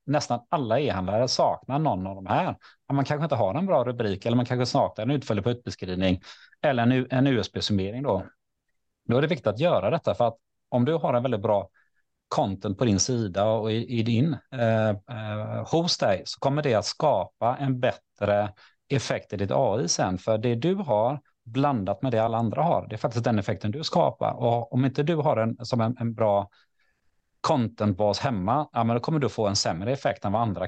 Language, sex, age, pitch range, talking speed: English, male, 30-49, 100-125 Hz, 205 wpm